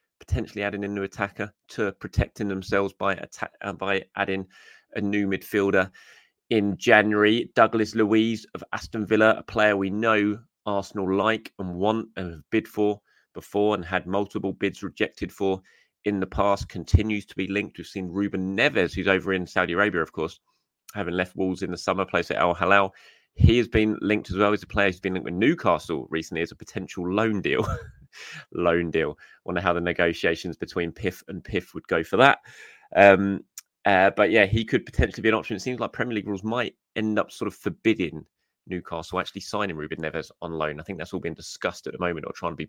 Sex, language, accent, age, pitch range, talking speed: male, English, British, 20-39, 90-105 Hz, 205 wpm